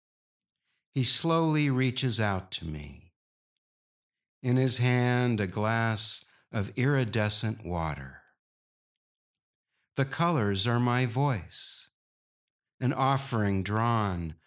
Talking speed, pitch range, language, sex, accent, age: 90 wpm, 95-125 Hz, English, male, American, 60-79